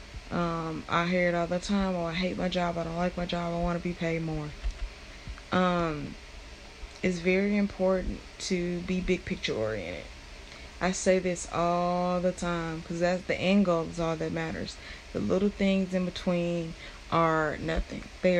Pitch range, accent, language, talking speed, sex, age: 165-185 Hz, American, English, 180 wpm, female, 20-39